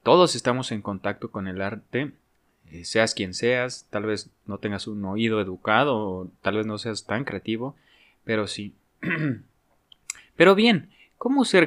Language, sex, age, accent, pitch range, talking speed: Spanish, male, 20-39, Mexican, 105-145 Hz, 155 wpm